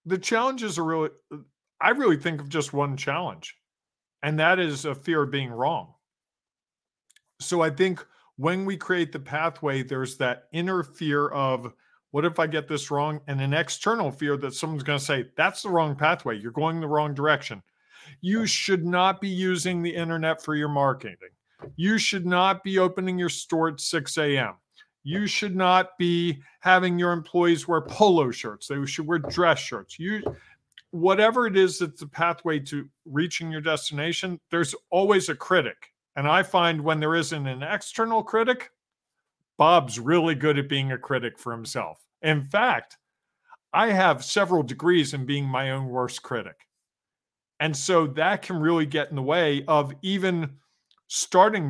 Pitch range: 145-180 Hz